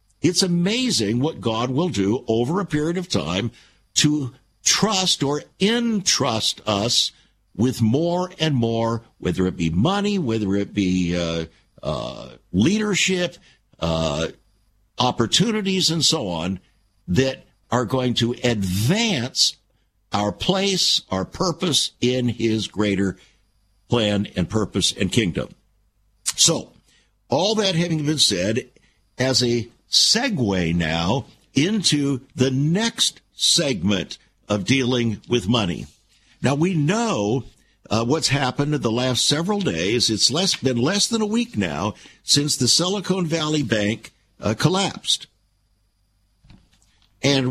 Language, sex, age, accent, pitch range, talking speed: English, male, 60-79, American, 100-160 Hz, 125 wpm